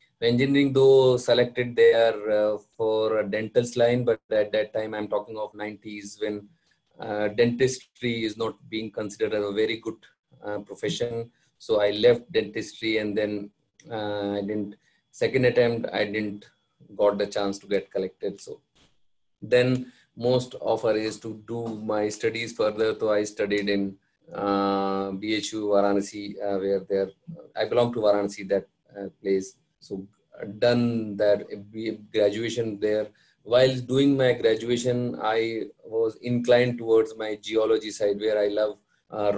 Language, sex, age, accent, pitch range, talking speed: English, male, 30-49, Indian, 100-120 Hz, 145 wpm